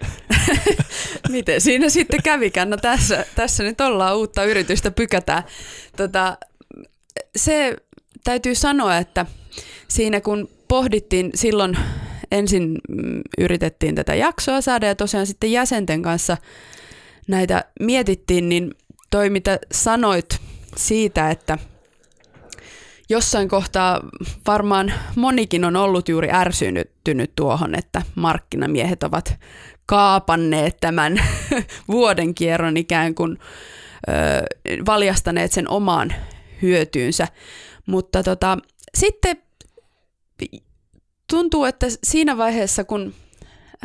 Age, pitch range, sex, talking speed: 20-39, 180-240 Hz, female, 95 wpm